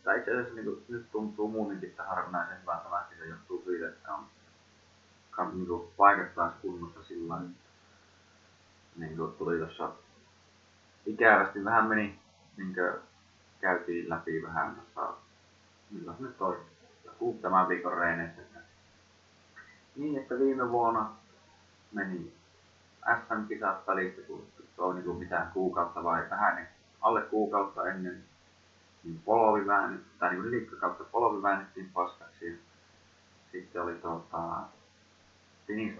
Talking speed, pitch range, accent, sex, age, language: 115 wpm, 85-105 Hz, native, male, 30-49, Finnish